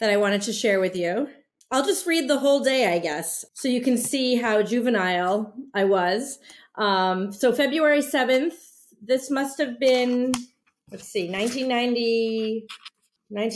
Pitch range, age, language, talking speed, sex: 205-285 Hz, 30-49, English, 150 wpm, female